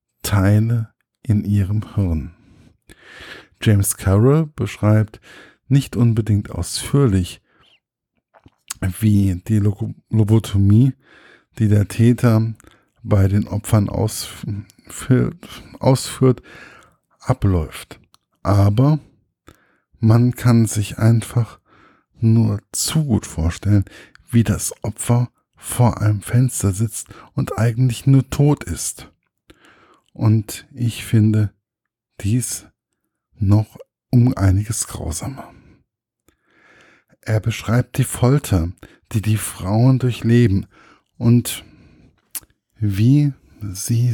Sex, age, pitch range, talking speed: male, 50-69, 100-120 Hz, 85 wpm